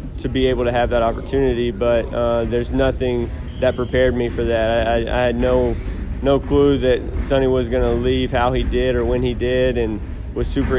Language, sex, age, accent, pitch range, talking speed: English, male, 20-39, American, 115-125 Hz, 205 wpm